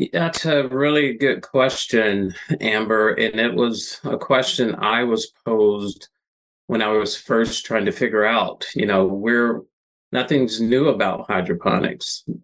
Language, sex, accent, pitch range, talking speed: English, male, American, 105-125 Hz, 140 wpm